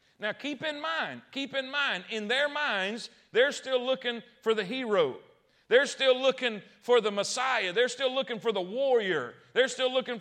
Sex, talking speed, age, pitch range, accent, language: male, 180 wpm, 40-59, 225-275 Hz, American, English